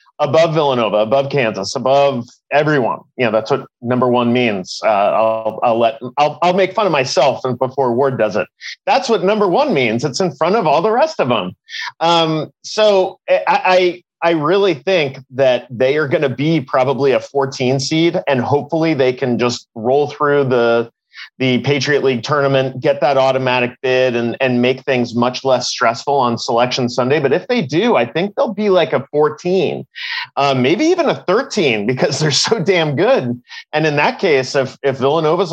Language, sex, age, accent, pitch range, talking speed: English, male, 30-49, American, 125-170 Hz, 190 wpm